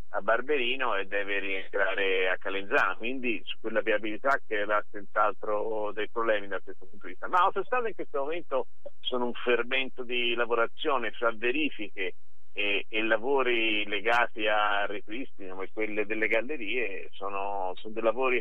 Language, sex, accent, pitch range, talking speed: Italian, male, native, 100-120 Hz, 155 wpm